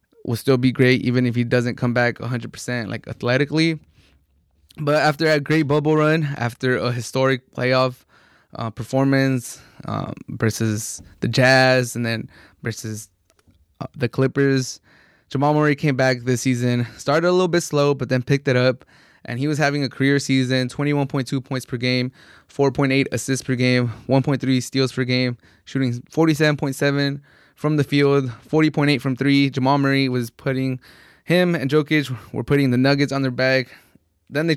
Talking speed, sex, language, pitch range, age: 165 wpm, male, English, 125-140 Hz, 20-39